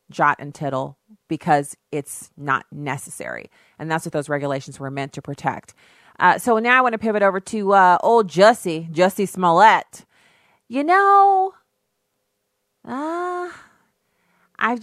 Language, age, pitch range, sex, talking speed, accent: English, 30-49, 150-215 Hz, female, 140 wpm, American